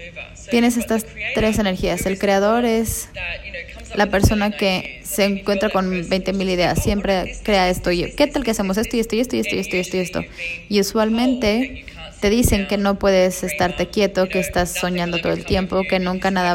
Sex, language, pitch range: female, English, 185-215 Hz